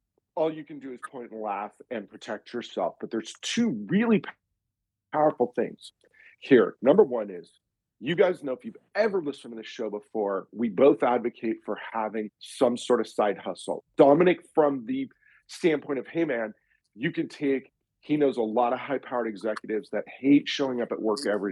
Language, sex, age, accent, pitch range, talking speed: English, male, 40-59, American, 110-155 Hz, 185 wpm